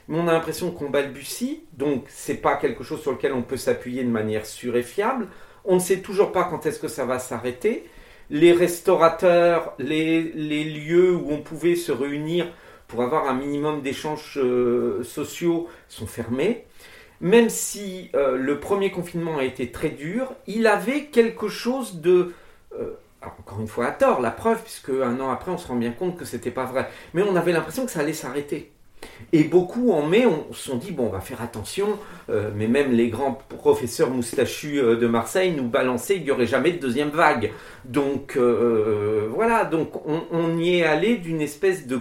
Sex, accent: male, French